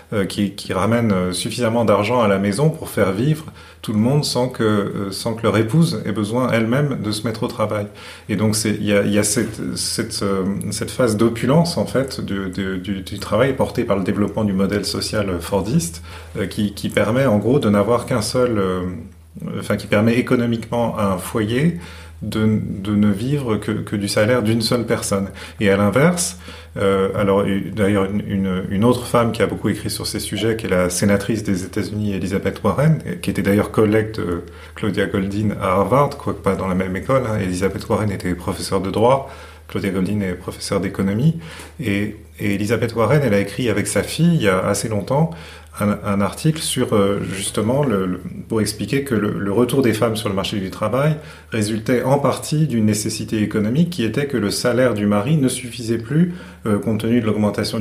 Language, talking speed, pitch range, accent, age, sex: French, 195 wpm, 100-120 Hz, French, 30-49, male